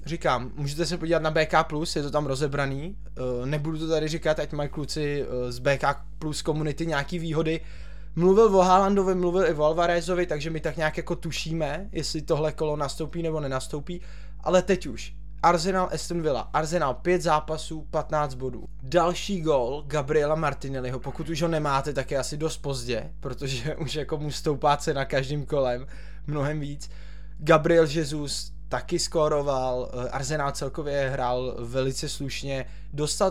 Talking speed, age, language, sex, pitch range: 155 wpm, 20-39, Czech, male, 135-160 Hz